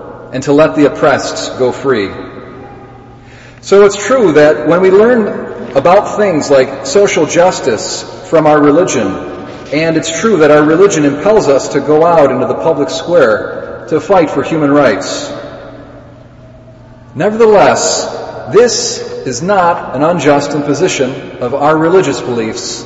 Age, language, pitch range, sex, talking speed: 40-59, English, 130-185 Hz, male, 140 wpm